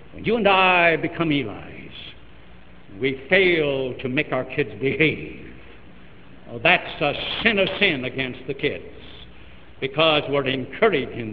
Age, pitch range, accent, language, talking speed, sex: 70-89, 135-205 Hz, American, English, 135 wpm, male